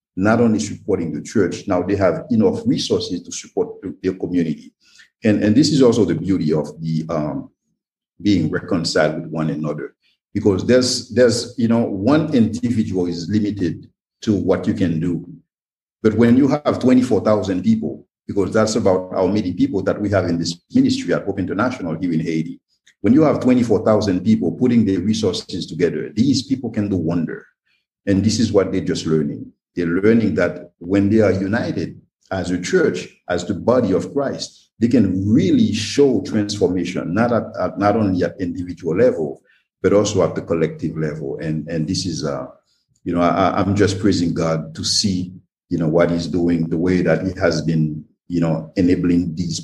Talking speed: 185 wpm